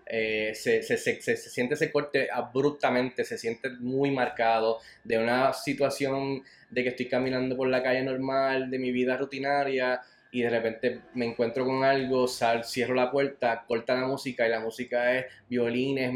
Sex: male